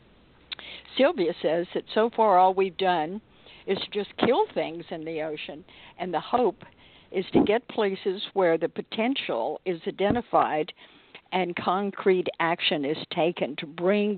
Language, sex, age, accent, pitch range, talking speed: English, female, 60-79, American, 170-210 Hz, 145 wpm